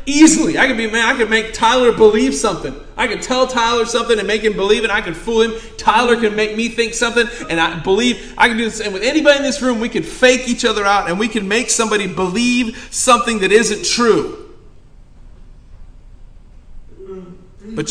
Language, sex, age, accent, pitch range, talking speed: English, male, 40-59, American, 160-220 Hz, 205 wpm